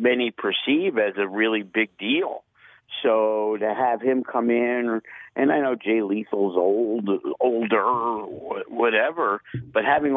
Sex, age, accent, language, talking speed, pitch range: male, 50-69, American, English, 135 wpm, 110-155 Hz